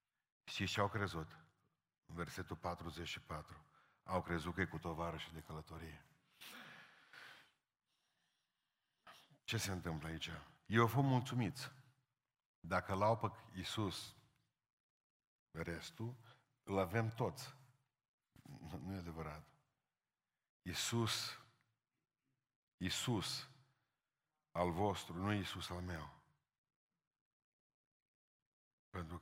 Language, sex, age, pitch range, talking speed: Romanian, male, 50-69, 85-115 Hz, 90 wpm